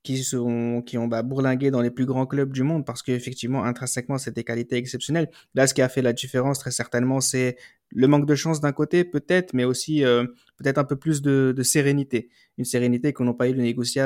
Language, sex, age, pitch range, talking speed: French, male, 20-39, 120-145 Hz, 220 wpm